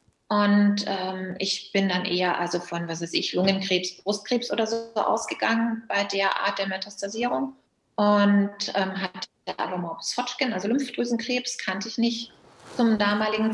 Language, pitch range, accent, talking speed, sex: German, 195-230 Hz, German, 145 wpm, female